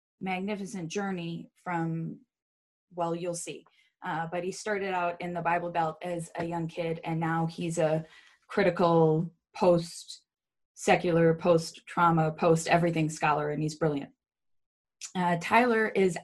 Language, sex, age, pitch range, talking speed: English, female, 20-39, 165-185 Hz, 125 wpm